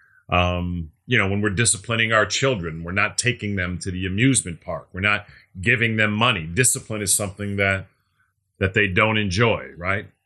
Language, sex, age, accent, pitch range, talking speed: English, male, 40-59, American, 95-115 Hz, 175 wpm